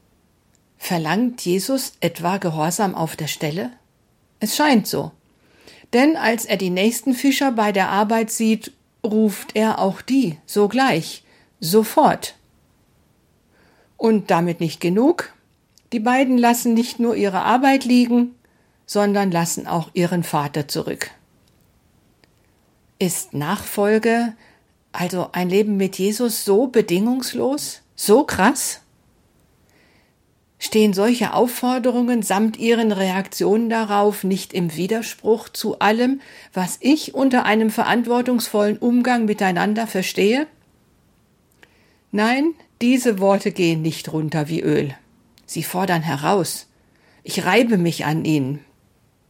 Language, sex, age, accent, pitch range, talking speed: German, female, 50-69, German, 180-240 Hz, 110 wpm